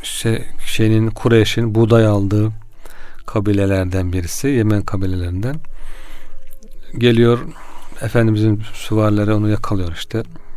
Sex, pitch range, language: male, 105-125 Hz, Turkish